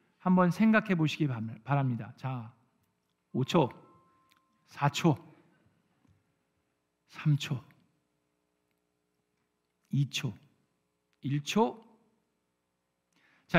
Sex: male